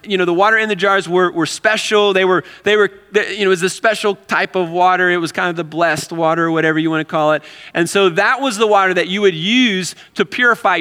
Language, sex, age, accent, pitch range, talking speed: English, male, 30-49, American, 160-195 Hz, 265 wpm